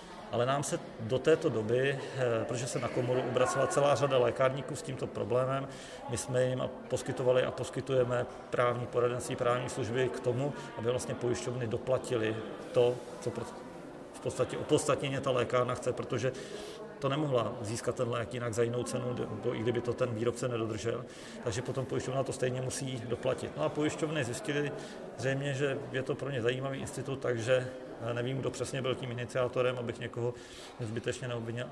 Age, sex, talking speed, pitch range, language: 40-59, male, 165 wpm, 120-130 Hz, Czech